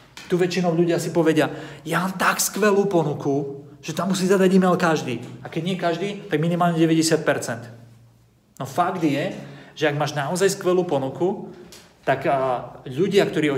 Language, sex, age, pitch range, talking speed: Slovak, male, 30-49, 130-165 Hz, 160 wpm